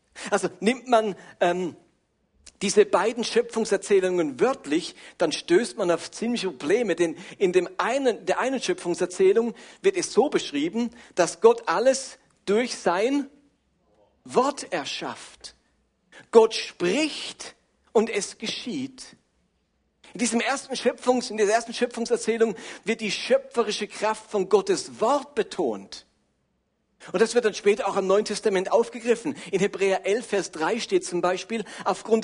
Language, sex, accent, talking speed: German, male, German, 135 wpm